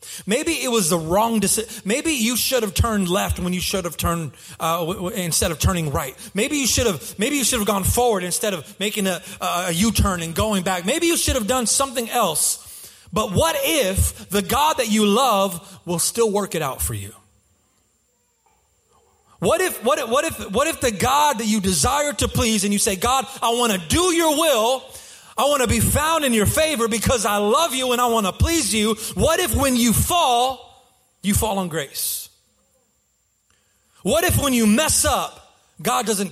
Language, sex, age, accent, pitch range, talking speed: English, male, 30-49, American, 185-245 Hz, 210 wpm